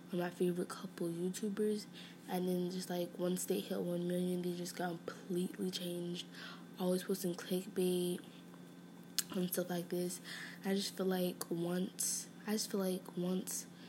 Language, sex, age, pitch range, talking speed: English, female, 20-39, 170-190 Hz, 145 wpm